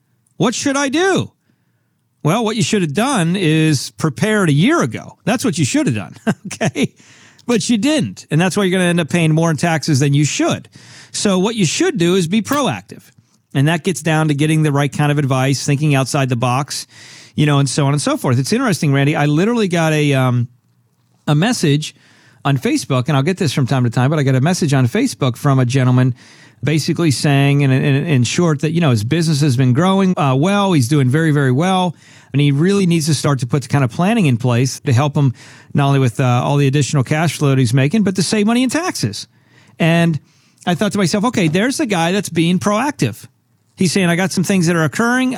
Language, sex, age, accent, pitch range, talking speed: English, male, 40-59, American, 135-180 Hz, 235 wpm